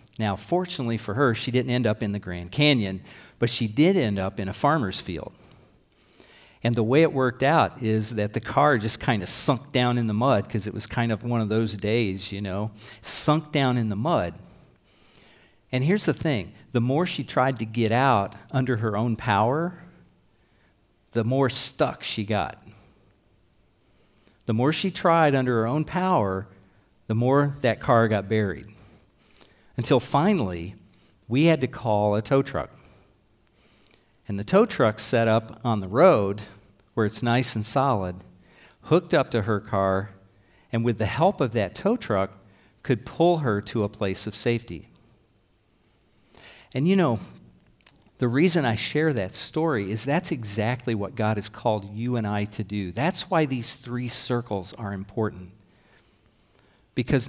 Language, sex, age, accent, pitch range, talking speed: English, male, 50-69, American, 105-135 Hz, 170 wpm